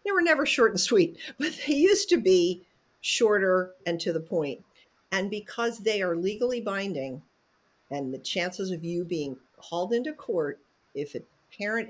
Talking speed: 170 wpm